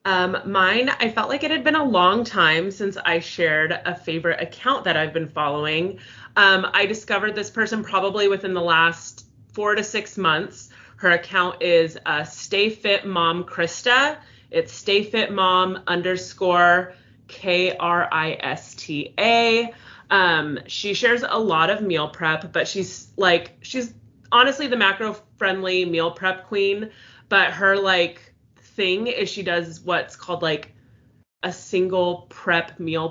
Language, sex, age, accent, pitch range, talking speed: English, female, 30-49, American, 165-205 Hz, 155 wpm